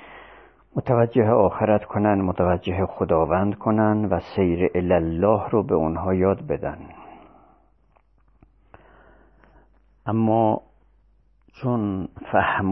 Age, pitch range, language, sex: 50-69, 85-105 Hz, Persian, male